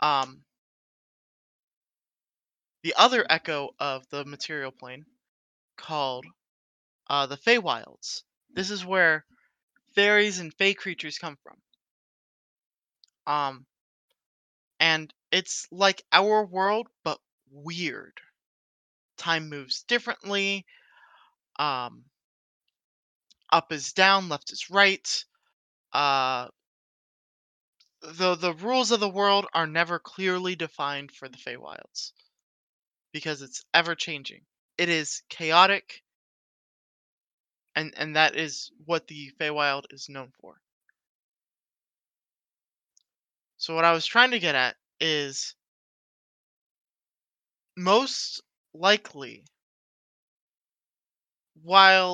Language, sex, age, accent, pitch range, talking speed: English, male, 20-39, American, 140-195 Hz, 95 wpm